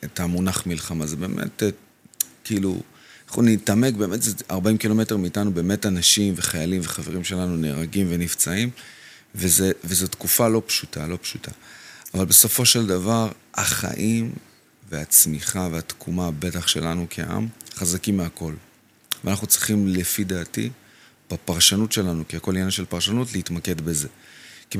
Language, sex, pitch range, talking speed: Hebrew, male, 85-105 Hz, 125 wpm